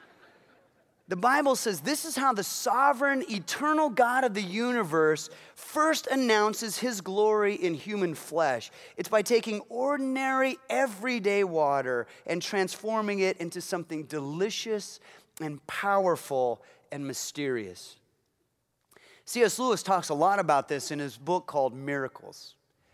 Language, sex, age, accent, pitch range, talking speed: English, male, 30-49, American, 180-250 Hz, 125 wpm